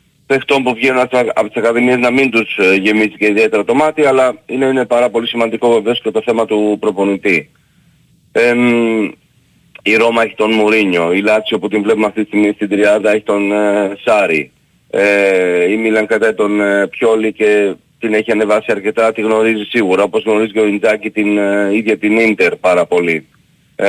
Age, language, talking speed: 40-59, Greek, 190 wpm